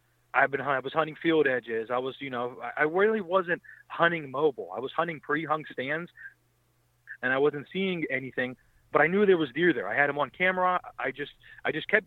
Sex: male